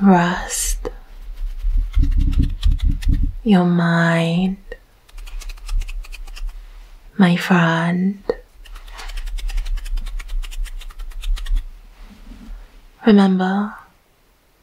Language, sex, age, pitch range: English, female, 20-39, 165-200 Hz